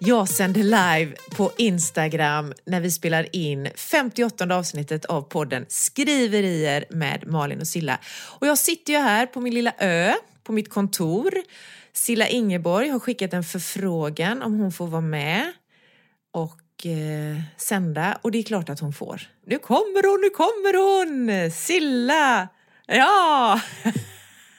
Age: 30-49